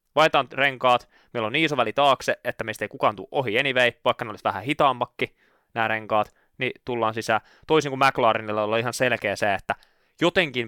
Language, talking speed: Finnish, 190 wpm